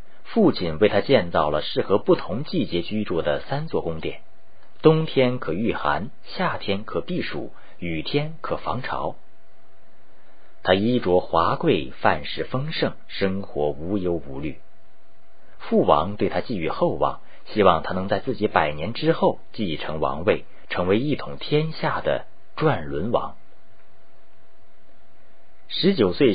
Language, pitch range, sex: Chinese, 85-110 Hz, male